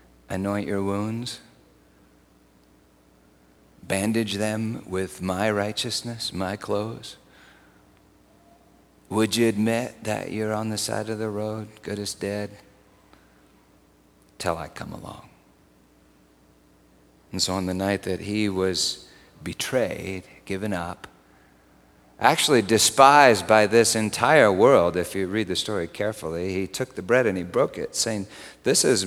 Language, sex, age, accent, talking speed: English, male, 50-69, American, 130 wpm